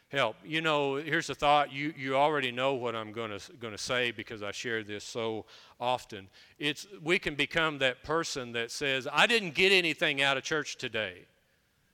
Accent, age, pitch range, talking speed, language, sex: American, 40-59, 150-205 Hz, 185 wpm, English, male